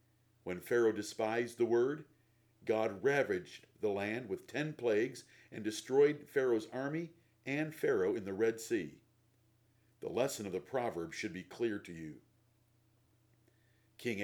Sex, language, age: male, English, 50-69